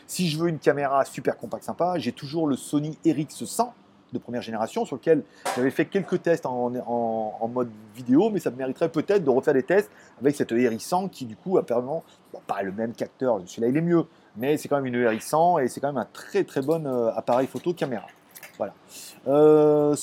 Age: 30-49